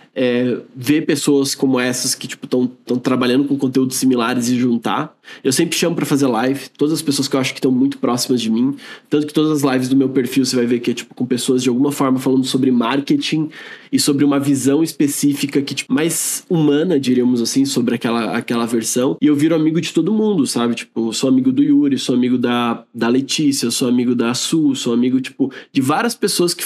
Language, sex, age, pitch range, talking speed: Portuguese, male, 20-39, 125-155 Hz, 225 wpm